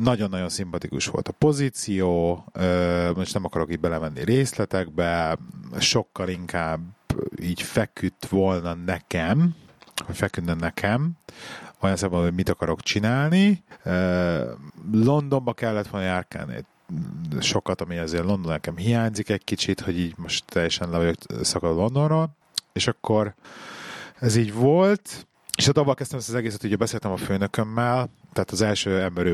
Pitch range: 85-110 Hz